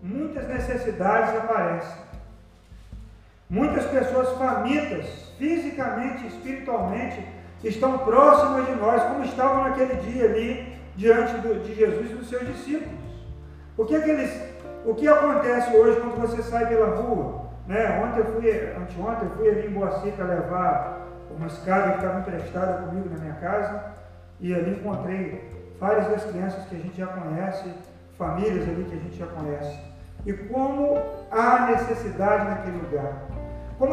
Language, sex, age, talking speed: Portuguese, male, 40-59, 150 wpm